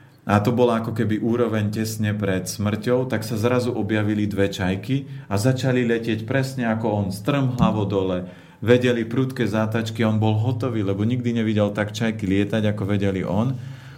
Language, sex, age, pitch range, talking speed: Slovak, male, 40-59, 105-120 Hz, 165 wpm